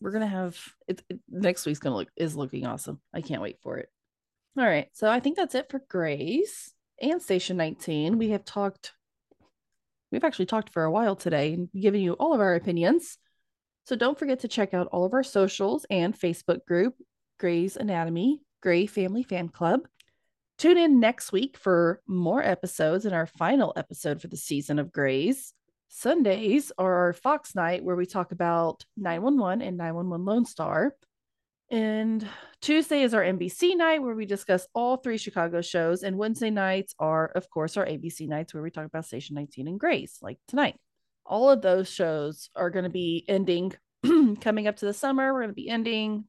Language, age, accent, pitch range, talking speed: English, 20-39, American, 175-230 Hz, 190 wpm